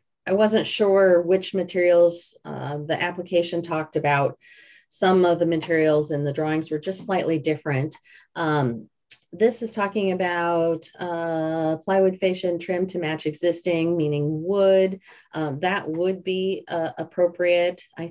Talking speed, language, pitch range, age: 140 wpm, English, 160-190 Hz, 30-49